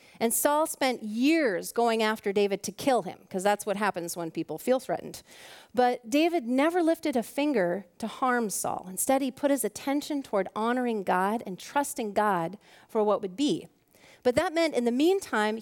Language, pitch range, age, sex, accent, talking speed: English, 210-280 Hz, 40-59, female, American, 185 wpm